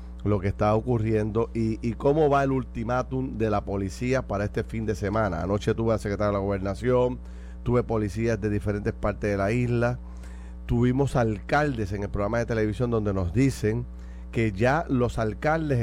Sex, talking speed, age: male, 180 wpm, 30-49